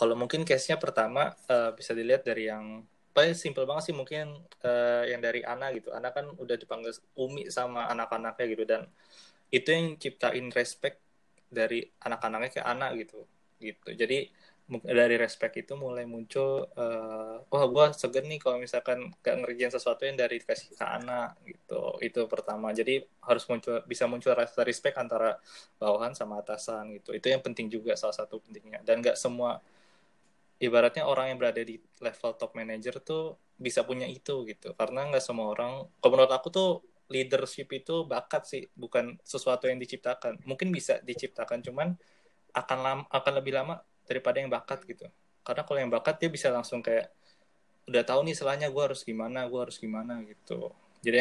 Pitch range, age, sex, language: 115-150 Hz, 20-39, male, Indonesian